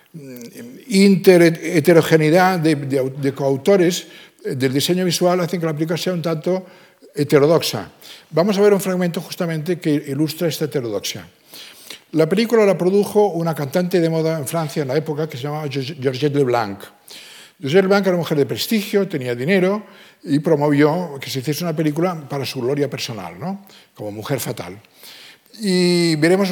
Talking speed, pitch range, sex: 160 wpm, 140-185 Hz, male